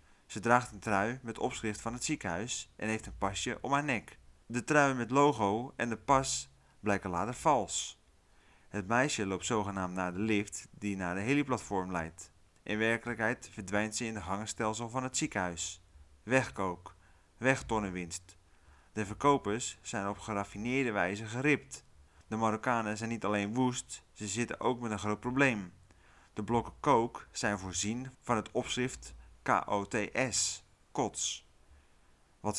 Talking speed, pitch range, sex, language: 150 wpm, 90-120 Hz, male, Dutch